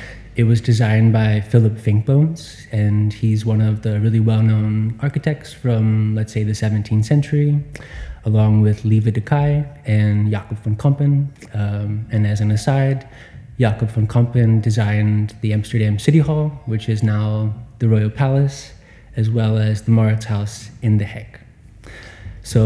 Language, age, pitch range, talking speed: English, 20-39, 110-120 Hz, 155 wpm